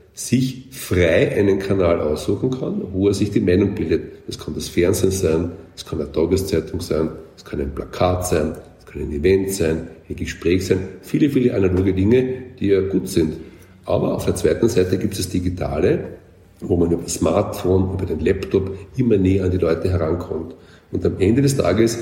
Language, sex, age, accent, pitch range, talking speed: German, male, 50-69, German, 90-105 Hz, 195 wpm